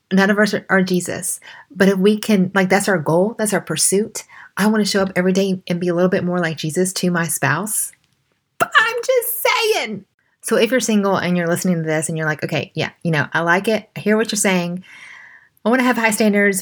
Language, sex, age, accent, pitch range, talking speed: English, female, 30-49, American, 170-200 Hz, 245 wpm